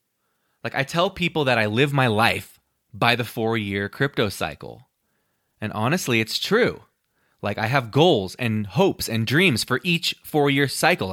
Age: 20-39